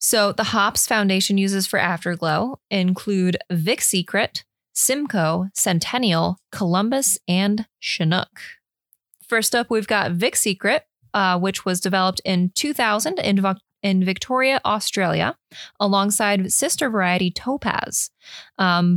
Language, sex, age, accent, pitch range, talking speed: English, female, 20-39, American, 185-225 Hz, 115 wpm